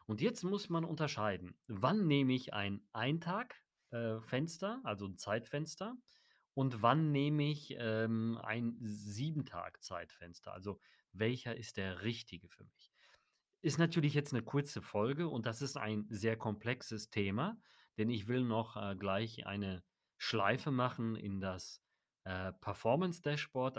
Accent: German